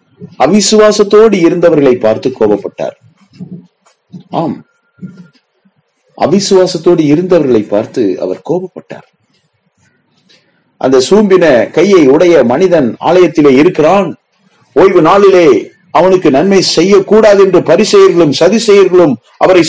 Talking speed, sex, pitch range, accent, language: 80 wpm, male, 175-220 Hz, native, Tamil